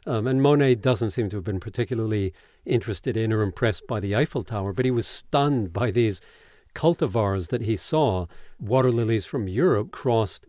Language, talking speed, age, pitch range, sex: English, 185 wpm, 50-69, 105-130 Hz, male